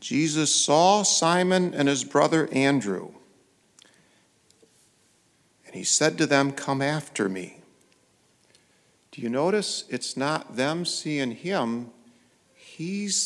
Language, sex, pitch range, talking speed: English, male, 120-165 Hz, 110 wpm